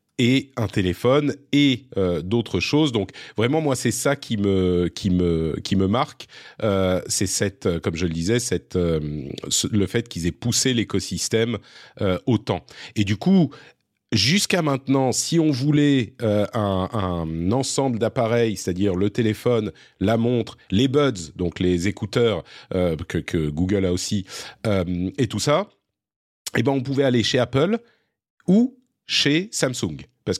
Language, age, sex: French, 40-59, male